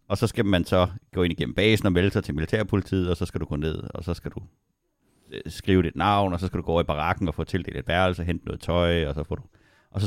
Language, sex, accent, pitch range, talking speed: Danish, male, native, 85-105 Hz, 300 wpm